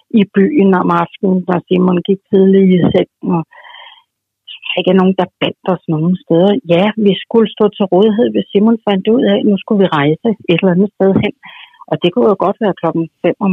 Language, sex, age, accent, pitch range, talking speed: Danish, female, 60-79, native, 170-210 Hz, 215 wpm